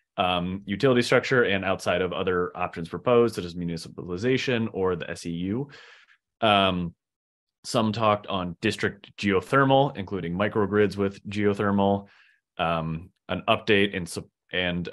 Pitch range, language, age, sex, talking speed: 85-110 Hz, English, 30-49, male, 120 wpm